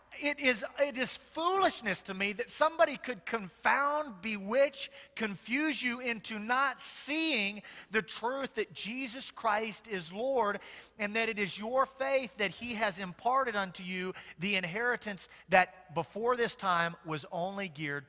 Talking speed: 150 wpm